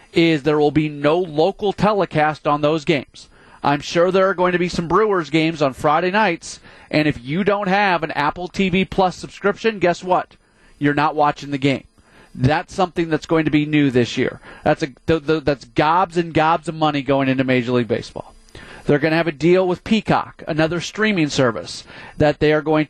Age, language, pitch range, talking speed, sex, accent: 30-49, English, 140-170 Hz, 205 wpm, male, American